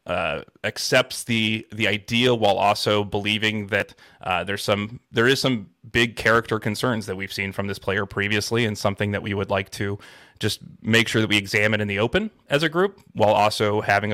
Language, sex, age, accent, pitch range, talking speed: English, male, 30-49, American, 105-120 Hz, 200 wpm